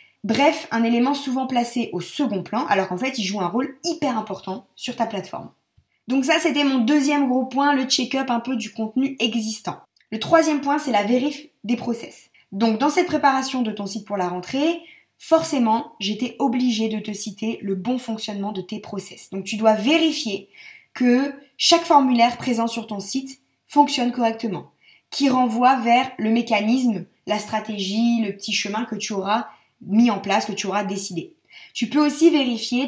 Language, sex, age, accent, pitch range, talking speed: French, female, 20-39, French, 210-265 Hz, 185 wpm